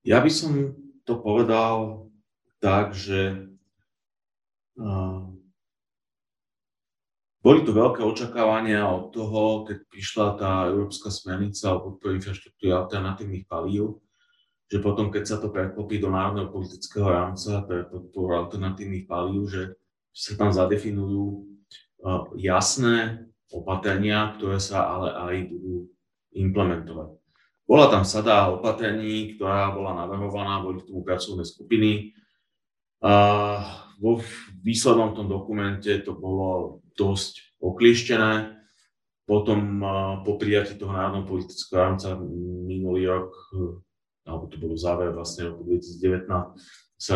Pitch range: 95-110 Hz